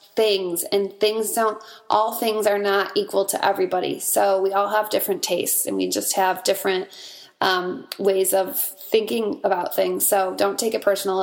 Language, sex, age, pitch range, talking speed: English, female, 20-39, 190-225 Hz, 175 wpm